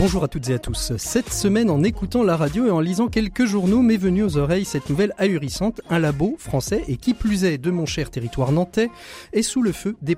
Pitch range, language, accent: 145-205 Hz, French, French